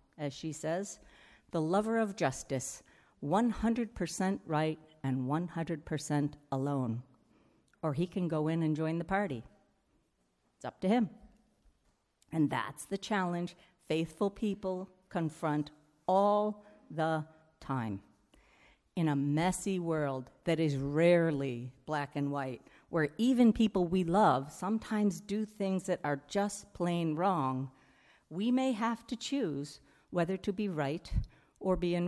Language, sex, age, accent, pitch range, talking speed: English, female, 50-69, American, 155-205 Hz, 130 wpm